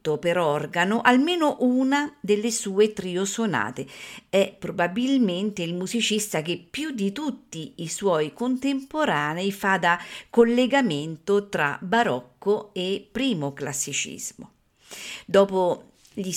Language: Italian